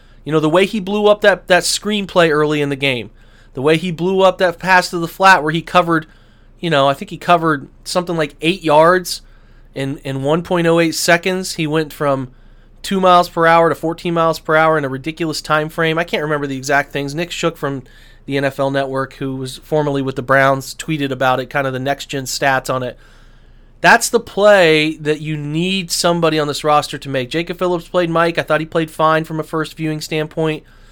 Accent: American